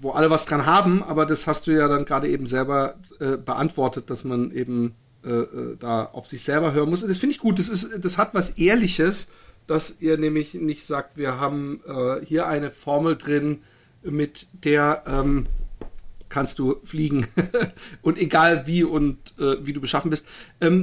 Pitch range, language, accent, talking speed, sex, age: 130-175 Hz, German, German, 185 wpm, male, 50-69